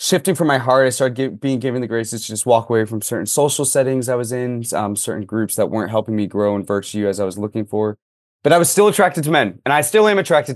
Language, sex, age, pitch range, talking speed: English, male, 20-39, 110-140 Hz, 275 wpm